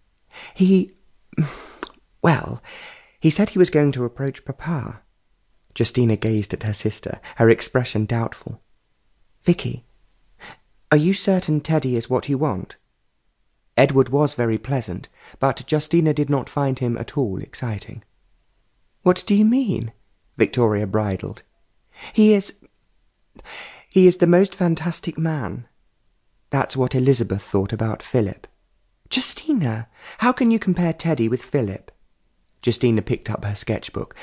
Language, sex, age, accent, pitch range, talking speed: English, male, 30-49, British, 105-145 Hz, 125 wpm